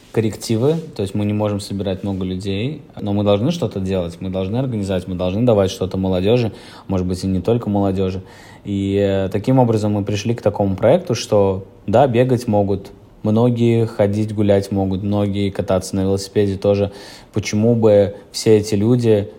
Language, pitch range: Russian, 100-110 Hz